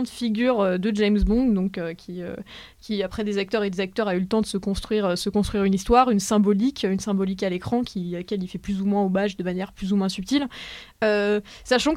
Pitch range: 195-225 Hz